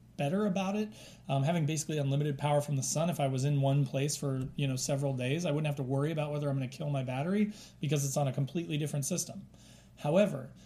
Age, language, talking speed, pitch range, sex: 30-49, English, 240 wpm, 135-175 Hz, male